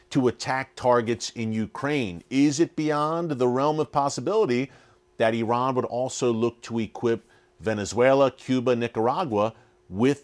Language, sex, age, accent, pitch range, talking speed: English, male, 40-59, American, 115-140 Hz, 135 wpm